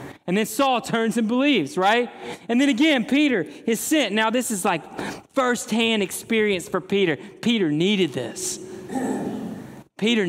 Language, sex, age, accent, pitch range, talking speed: English, male, 30-49, American, 160-245 Hz, 145 wpm